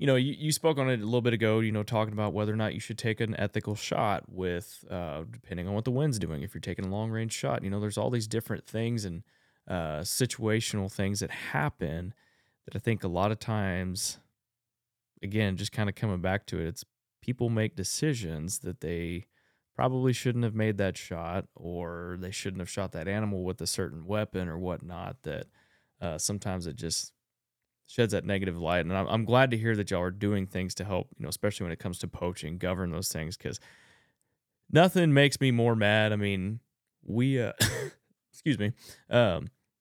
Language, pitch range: English, 95-115 Hz